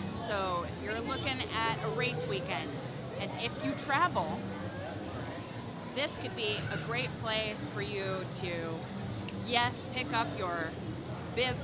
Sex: female